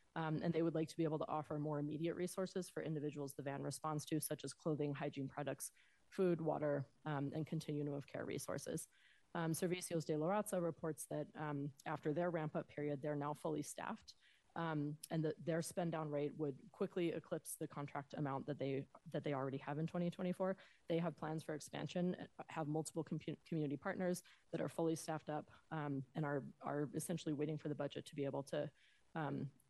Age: 20-39